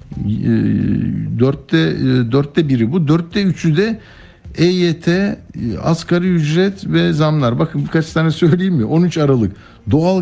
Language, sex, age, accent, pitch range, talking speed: Turkish, male, 60-79, native, 105-150 Hz, 125 wpm